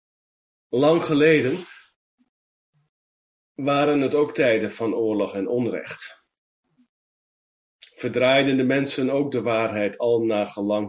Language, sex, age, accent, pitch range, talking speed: Dutch, male, 40-59, Dutch, 115-150 Hz, 105 wpm